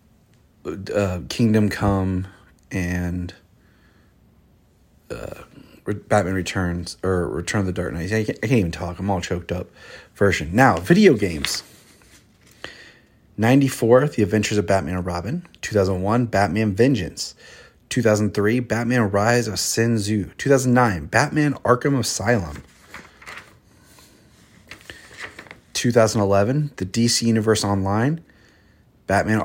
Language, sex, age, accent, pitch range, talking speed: English, male, 30-49, American, 100-125 Hz, 105 wpm